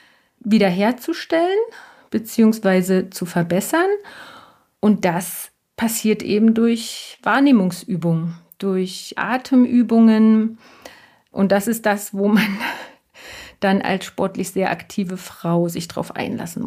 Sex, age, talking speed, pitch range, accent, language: female, 40-59, 95 wpm, 185-220 Hz, German, German